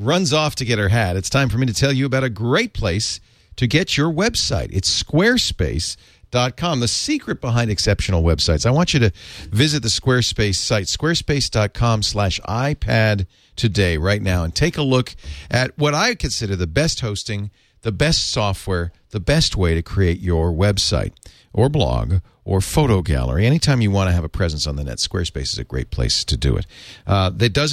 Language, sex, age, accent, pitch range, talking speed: English, male, 50-69, American, 90-130 Hz, 195 wpm